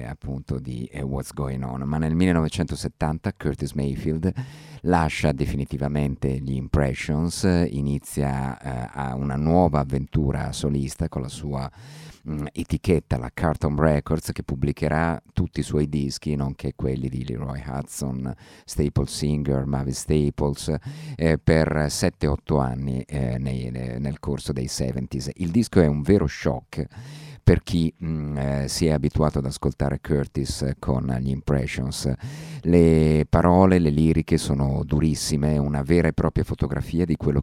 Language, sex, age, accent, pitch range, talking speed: Italian, male, 50-69, native, 70-80 Hz, 140 wpm